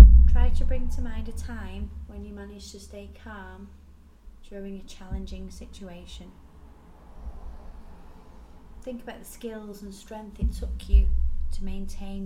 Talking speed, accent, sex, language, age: 135 wpm, British, female, English, 30-49